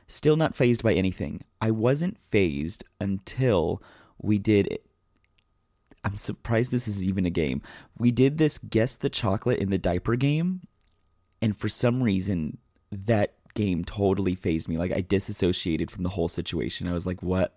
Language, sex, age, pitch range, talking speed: English, male, 30-49, 90-110 Hz, 165 wpm